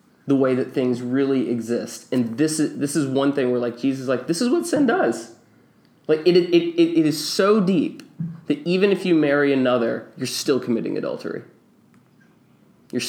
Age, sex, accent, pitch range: 20-39, male, American, 125-155 Hz